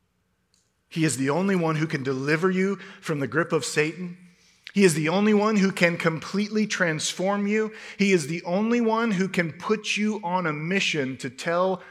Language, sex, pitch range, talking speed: English, male, 130-185 Hz, 190 wpm